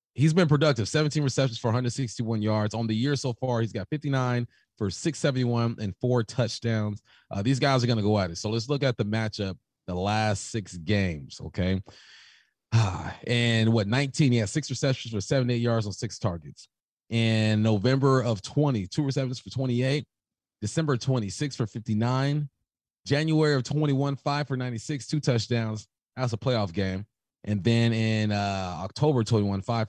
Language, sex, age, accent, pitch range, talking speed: English, male, 30-49, American, 105-130 Hz, 170 wpm